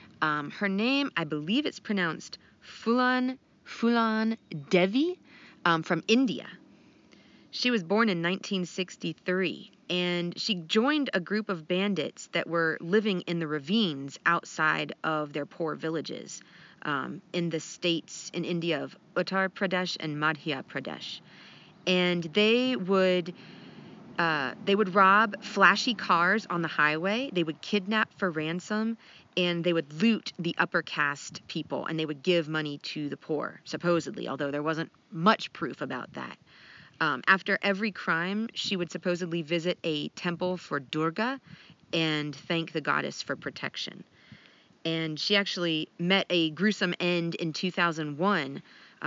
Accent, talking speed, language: American, 140 wpm, English